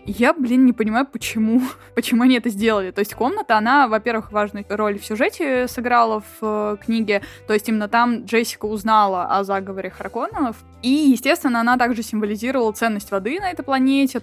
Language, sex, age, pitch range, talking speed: Russian, female, 20-39, 210-250 Hz, 175 wpm